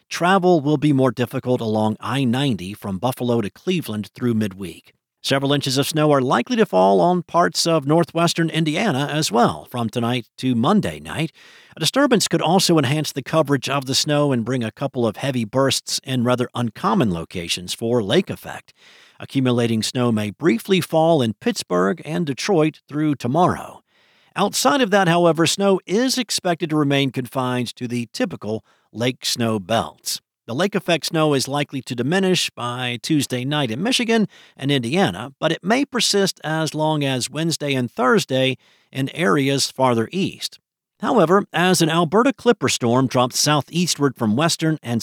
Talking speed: 165 wpm